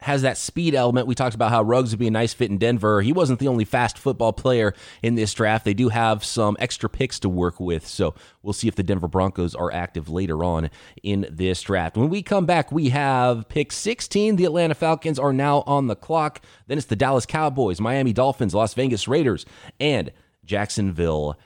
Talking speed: 215 wpm